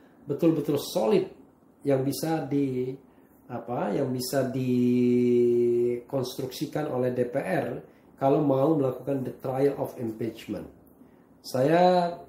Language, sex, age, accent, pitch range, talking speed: Indonesian, male, 40-59, native, 125-155 Hz, 95 wpm